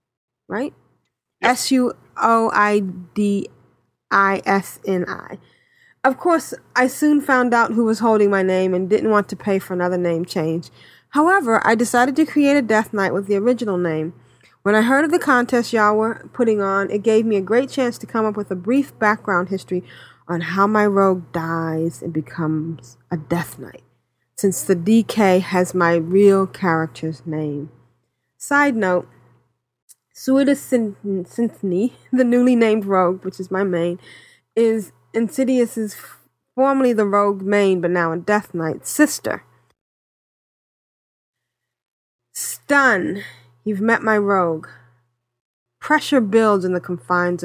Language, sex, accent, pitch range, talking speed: English, female, American, 170-225 Hz, 140 wpm